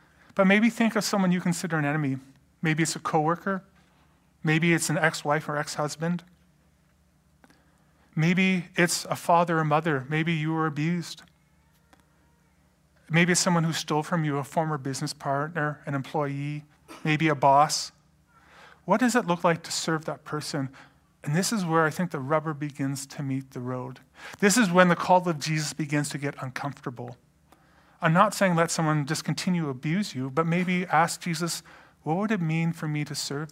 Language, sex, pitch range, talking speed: English, male, 145-175 Hz, 180 wpm